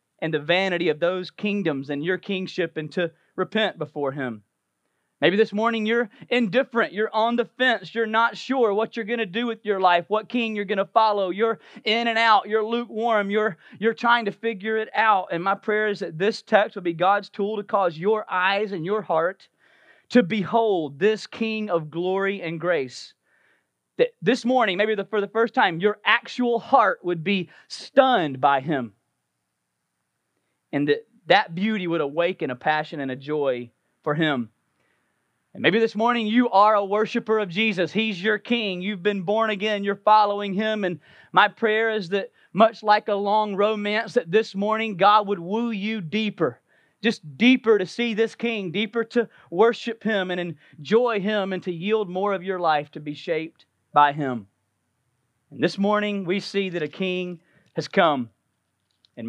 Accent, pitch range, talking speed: American, 170-220 Hz, 185 wpm